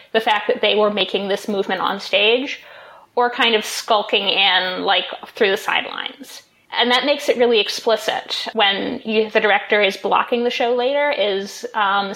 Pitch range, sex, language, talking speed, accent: 200-245 Hz, female, English, 175 wpm, American